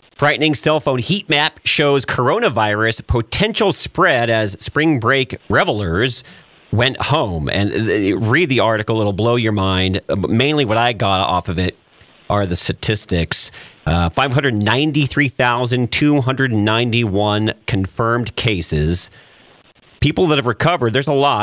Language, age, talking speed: English, 40-59, 125 wpm